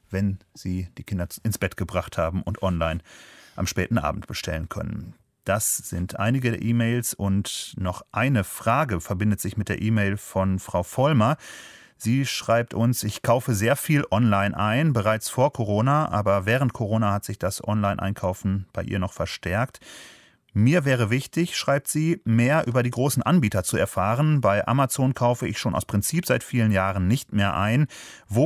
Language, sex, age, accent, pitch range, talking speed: German, male, 30-49, German, 95-120 Hz, 170 wpm